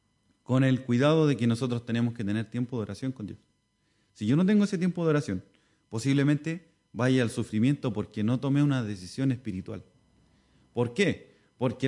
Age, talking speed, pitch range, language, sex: 30-49, 175 wpm, 115-150 Hz, Spanish, male